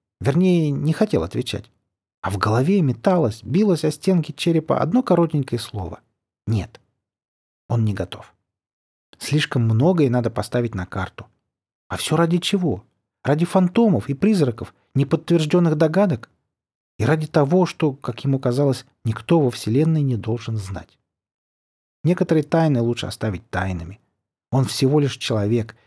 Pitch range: 105-150 Hz